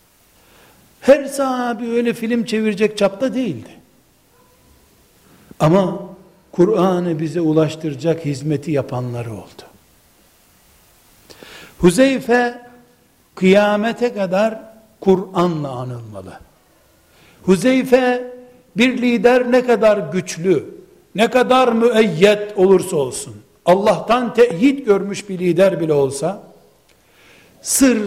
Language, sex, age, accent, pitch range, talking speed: Turkish, male, 60-79, native, 165-230 Hz, 80 wpm